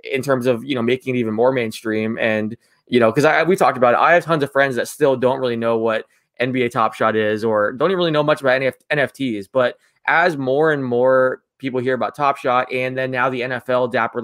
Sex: male